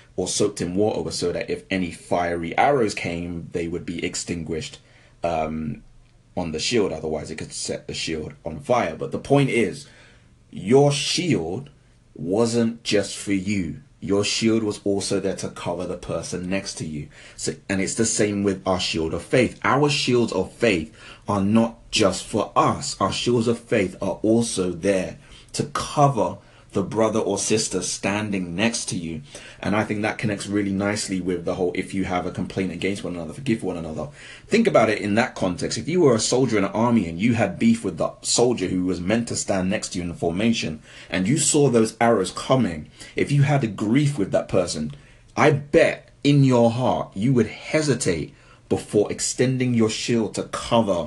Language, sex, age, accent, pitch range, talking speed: English, male, 30-49, British, 95-120 Hz, 195 wpm